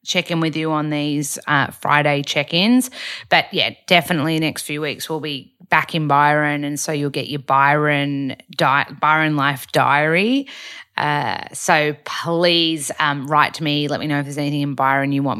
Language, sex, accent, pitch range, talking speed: English, female, Australian, 145-175 Hz, 180 wpm